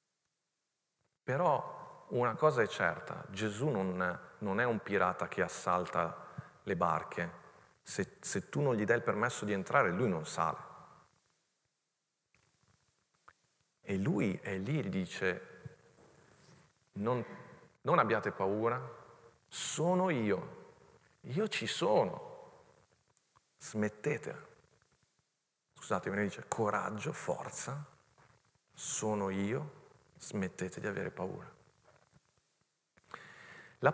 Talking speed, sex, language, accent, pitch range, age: 100 wpm, male, Italian, native, 100-145 Hz, 40-59